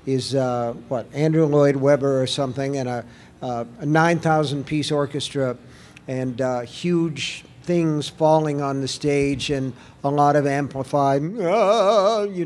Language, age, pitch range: English, 50-69, 130-155 Hz